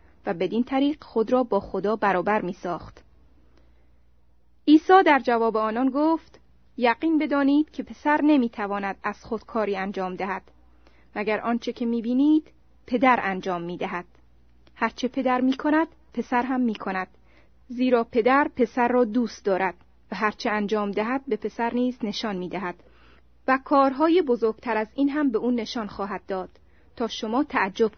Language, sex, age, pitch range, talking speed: Persian, female, 30-49, 190-260 Hz, 140 wpm